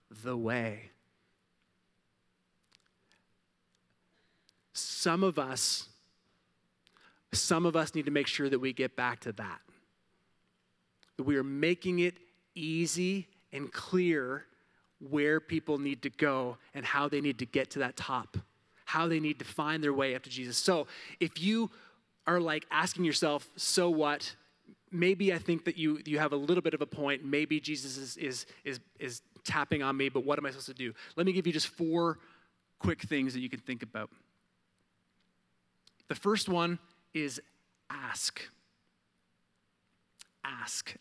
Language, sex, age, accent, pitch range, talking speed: English, male, 30-49, American, 130-165 Hz, 155 wpm